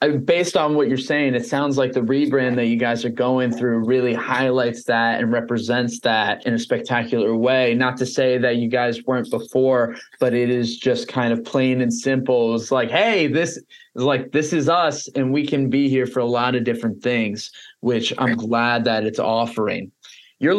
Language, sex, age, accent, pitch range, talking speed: English, male, 20-39, American, 125-145 Hz, 200 wpm